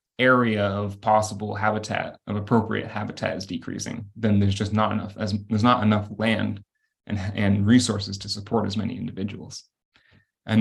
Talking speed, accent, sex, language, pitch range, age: 160 wpm, American, male, English, 105-115 Hz, 20-39